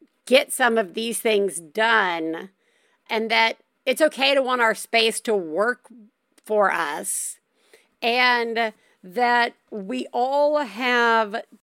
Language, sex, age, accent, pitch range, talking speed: English, female, 50-69, American, 220-280 Hz, 120 wpm